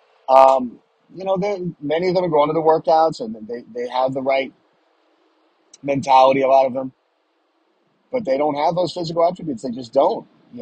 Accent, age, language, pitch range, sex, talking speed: American, 30-49, English, 115-145 Hz, male, 190 wpm